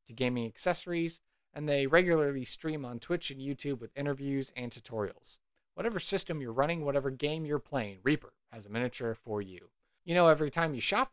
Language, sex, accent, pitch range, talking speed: English, male, American, 125-165 Hz, 190 wpm